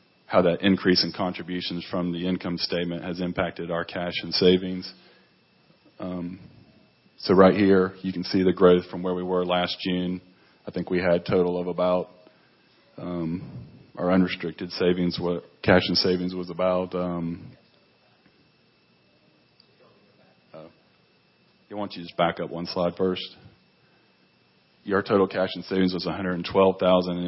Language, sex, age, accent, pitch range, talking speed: English, male, 30-49, American, 85-95 Hz, 145 wpm